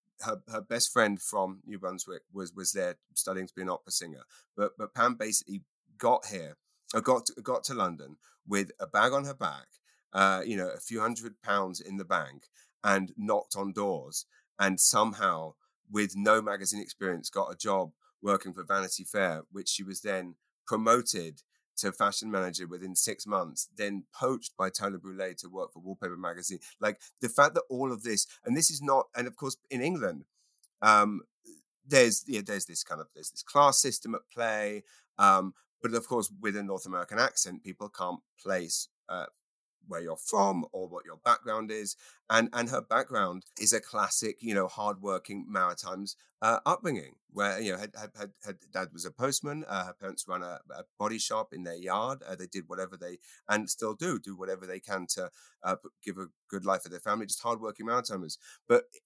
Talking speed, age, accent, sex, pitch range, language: 195 wpm, 30-49, British, male, 95-115 Hz, English